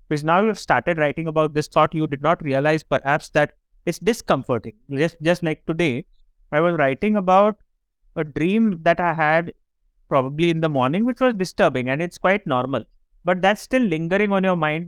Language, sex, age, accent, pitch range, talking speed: English, male, 30-49, Indian, 135-175 Hz, 190 wpm